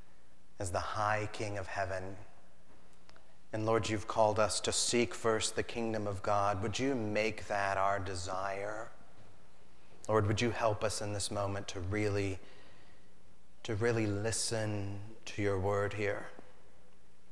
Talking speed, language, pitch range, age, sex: 140 wpm, English, 95-110 Hz, 30-49, male